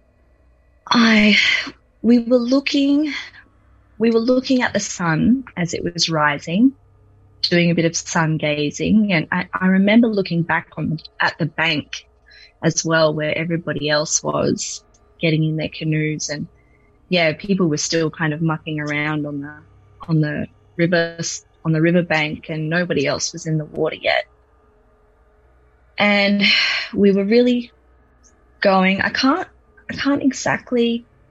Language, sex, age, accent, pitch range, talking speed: English, female, 20-39, Australian, 150-205 Hz, 145 wpm